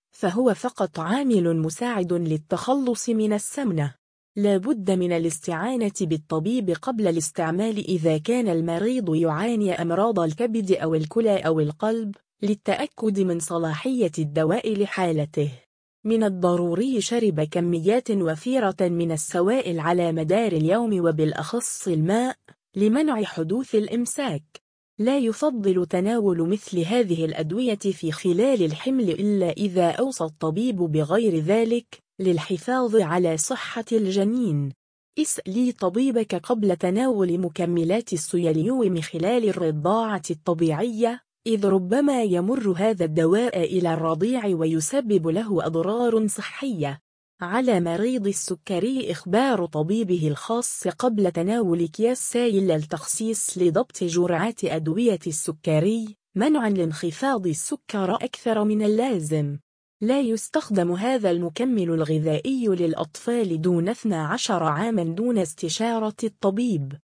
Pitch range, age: 170-230 Hz, 20-39